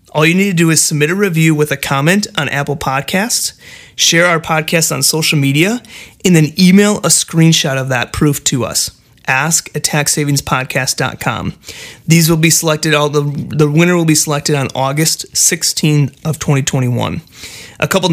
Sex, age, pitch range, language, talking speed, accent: male, 30-49, 135-165 Hz, English, 170 wpm, American